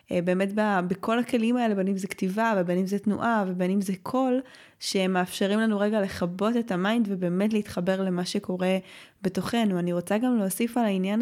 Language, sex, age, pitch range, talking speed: Hebrew, female, 20-39, 190-235 Hz, 180 wpm